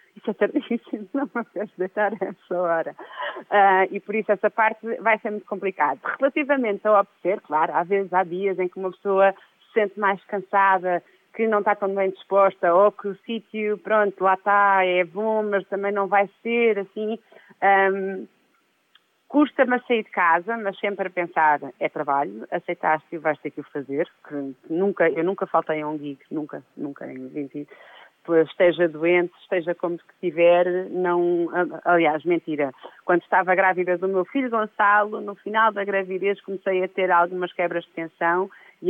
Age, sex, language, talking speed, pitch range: 30-49, female, Portuguese, 175 wpm, 170-205 Hz